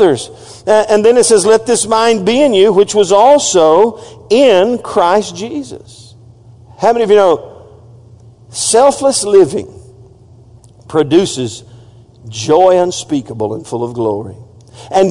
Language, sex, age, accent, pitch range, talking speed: English, male, 50-69, American, 115-175 Hz, 125 wpm